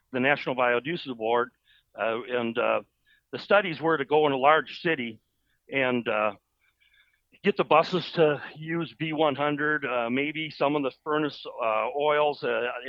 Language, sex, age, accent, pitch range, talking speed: English, male, 60-79, American, 125-155 Hz, 150 wpm